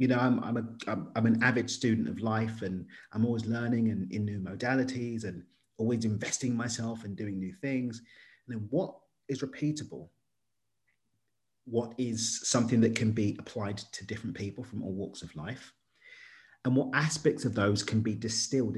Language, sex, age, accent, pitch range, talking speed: English, male, 30-49, British, 105-135 Hz, 185 wpm